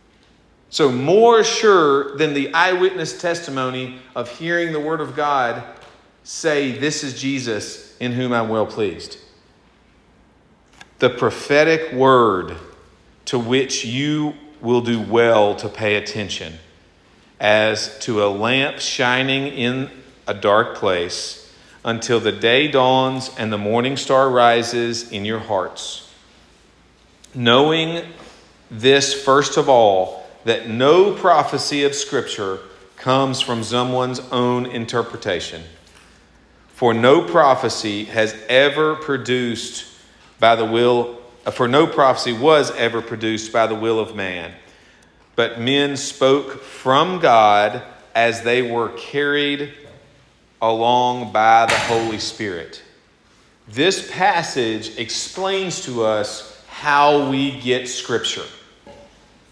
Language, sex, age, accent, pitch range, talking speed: English, male, 40-59, American, 110-140 Hz, 115 wpm